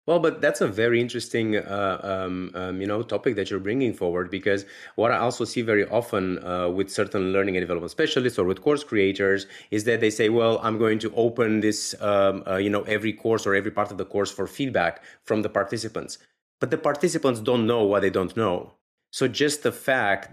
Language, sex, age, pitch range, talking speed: English, male, 30-49, 95-120 Hz, 220 wpm